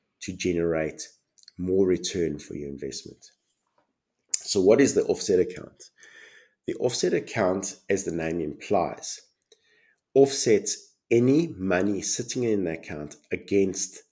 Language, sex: English, male